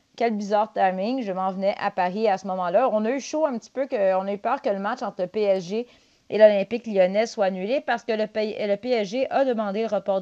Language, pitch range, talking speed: French, 190-230 Hz, 245 wpm